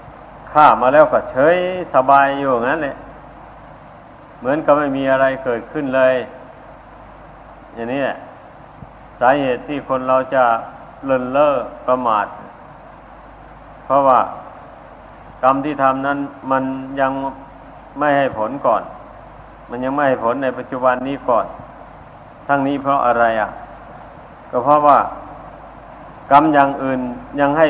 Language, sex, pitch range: Thai, male, 130-145 Hz